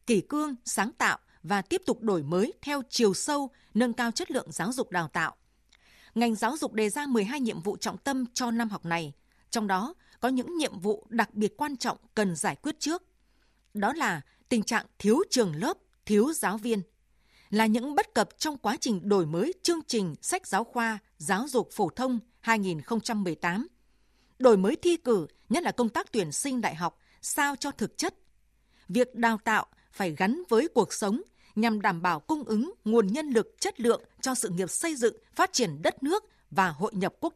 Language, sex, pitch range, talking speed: Vietnamese, female, 205-275 Hz, 200 wpm